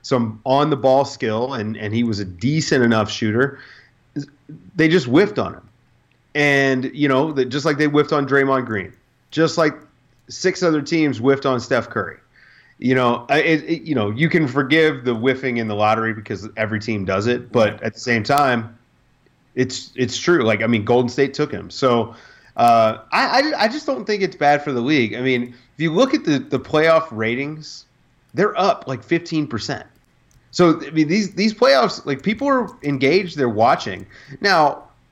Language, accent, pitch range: English, American, 120-160 Hz